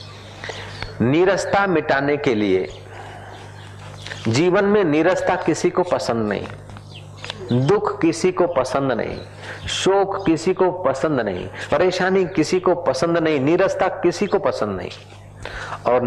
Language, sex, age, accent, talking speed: Hindi, male, 50-69, native, 120 wpm